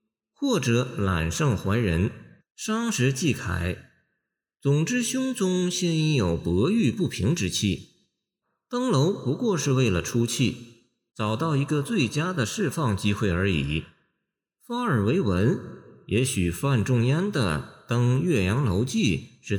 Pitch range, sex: 100-165 Hz, male